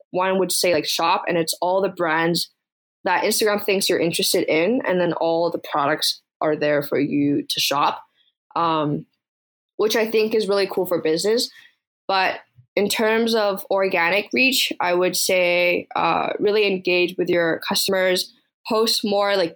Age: 10-29